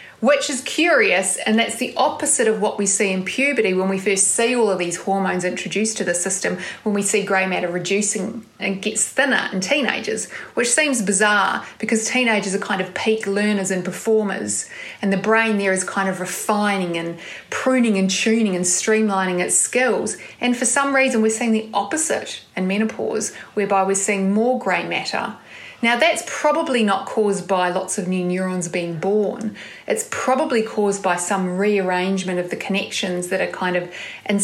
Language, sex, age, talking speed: English, female, 30-49, 185 wpm